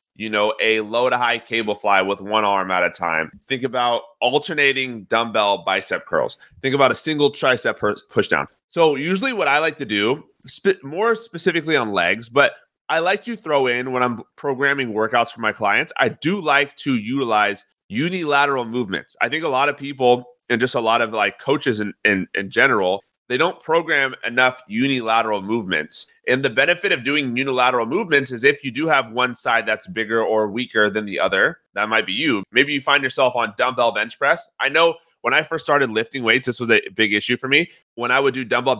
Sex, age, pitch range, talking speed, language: male, 30-49, 110-145 Hz, 205 wpm, English